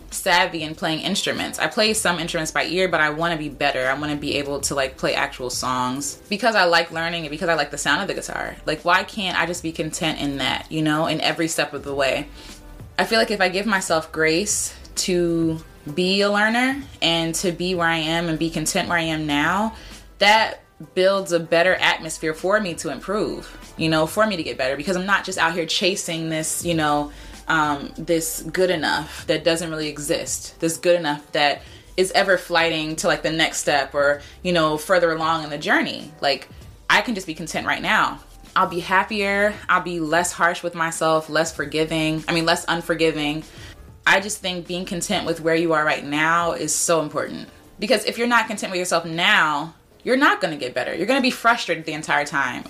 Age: 20-39